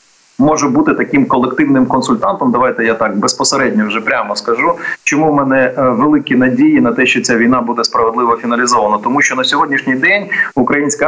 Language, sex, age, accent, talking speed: Ukrainian, male, 30-49, native, 170 wpm